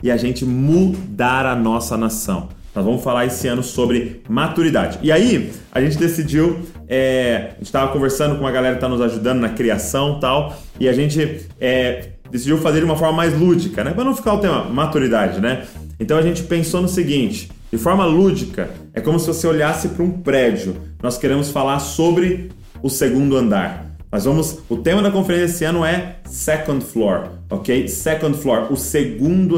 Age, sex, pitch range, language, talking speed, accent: 20-39, male, 120-155 Hz, Portuguese, 190 wpm, Brazilian